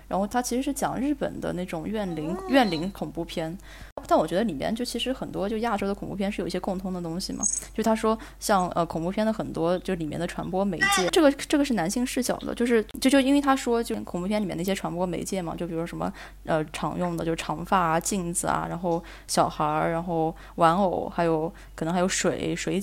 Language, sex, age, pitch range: Chinese, female, 20-39, 165-205 Hz